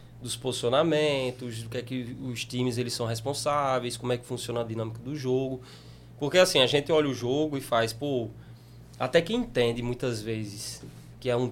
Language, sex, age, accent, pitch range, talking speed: Portuguese, male, 20-39, Brazilian, 120-150 Hz, 195 wpm